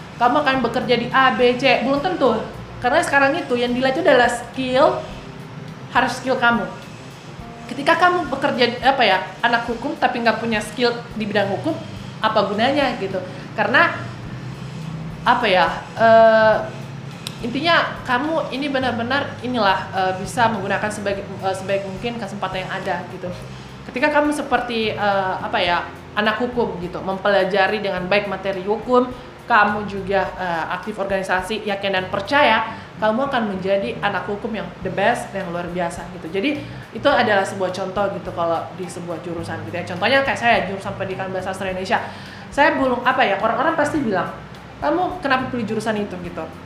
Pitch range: 190-250 Hz